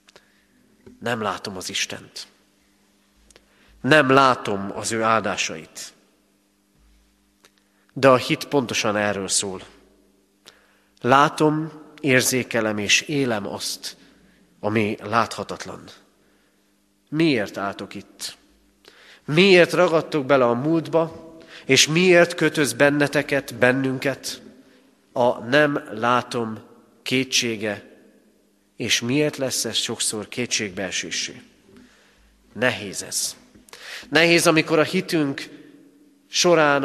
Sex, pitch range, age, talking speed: male, 100-150 Hz, 40-59, 85 wpm